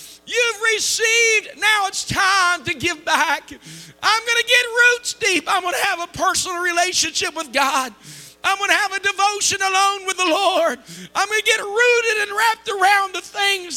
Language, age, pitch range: English, 50-69, 240-360 Hz